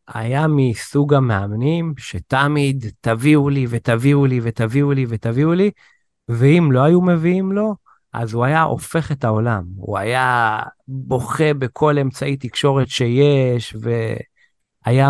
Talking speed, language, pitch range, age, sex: 125 wpm, Hebrew, 110-140 Hz, 30-49, male